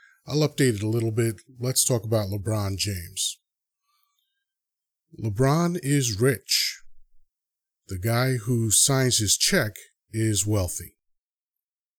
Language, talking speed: English, 110 wpm